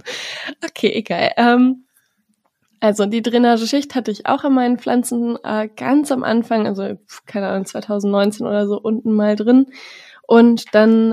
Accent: German